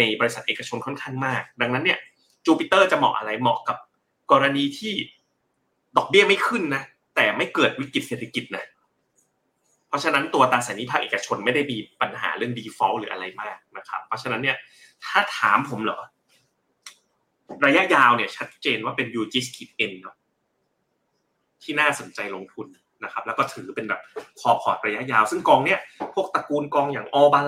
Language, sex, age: Thai, male, 30-49